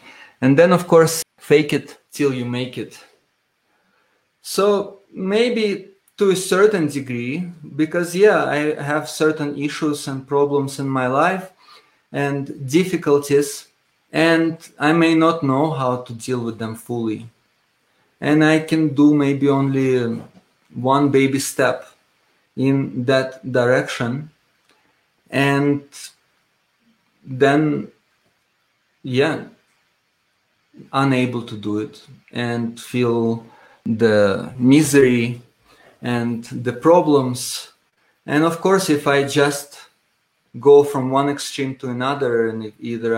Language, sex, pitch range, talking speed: English, male, 120-150 Hz, 110 wpm